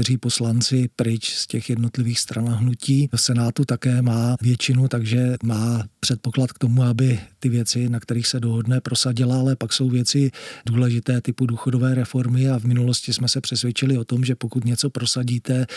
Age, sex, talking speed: 40-59, male, 170 wpm